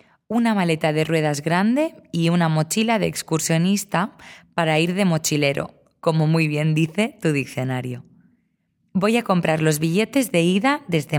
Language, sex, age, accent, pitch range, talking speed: English, female, 20-39, Spanish, 150-195 Hz, 150 wpm